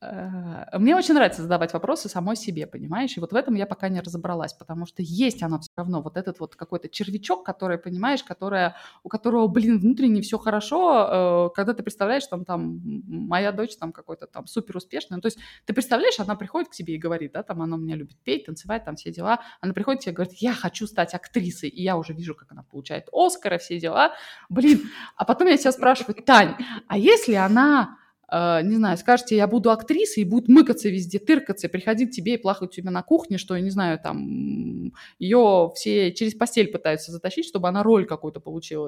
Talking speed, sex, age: 210 wpm, female, 20-39